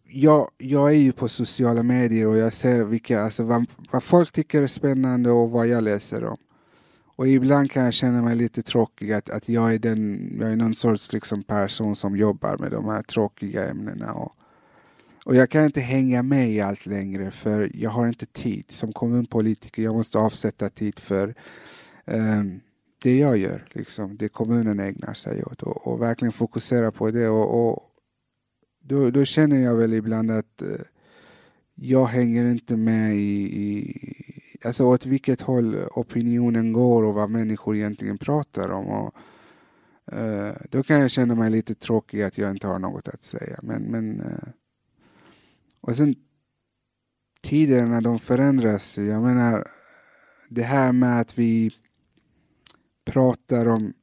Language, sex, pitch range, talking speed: Swedish, male, 110-125 Hz, 160 wpm